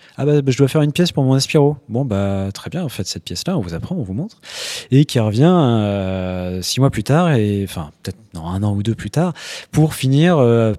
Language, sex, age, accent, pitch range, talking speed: French, male, 20-39, French, 105-135 Hz, 265 wpm